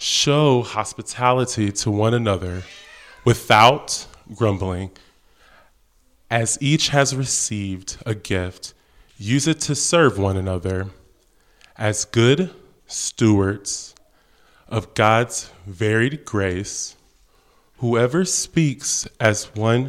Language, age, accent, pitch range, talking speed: English, 20-39, American, 100-125 Hz, 90 wpm